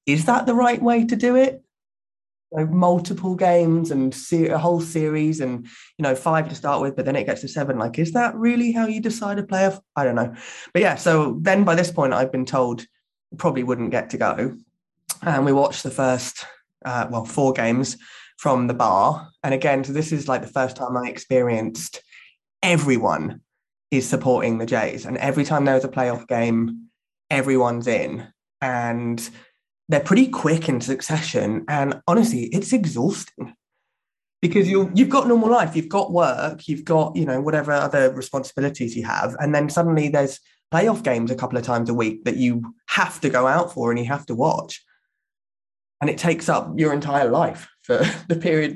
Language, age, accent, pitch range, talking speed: English, 20-39, British, 125-165 Hz, 190 wpm